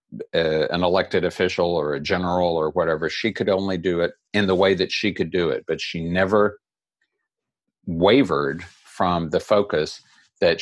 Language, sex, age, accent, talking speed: English, male, 50-69, American, 170 wpm